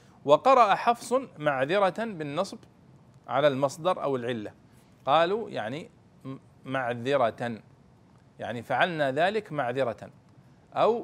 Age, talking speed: 40-59, 85 wpm